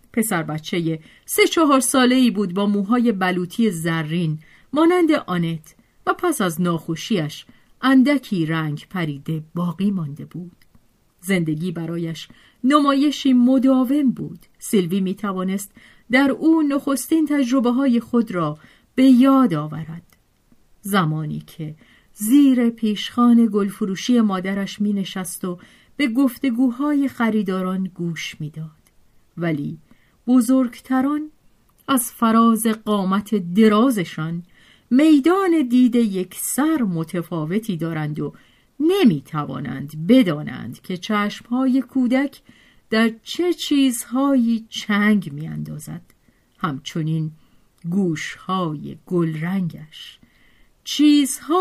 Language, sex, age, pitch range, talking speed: Persian, female, 40-59, 170-260 Hz, 95 wpm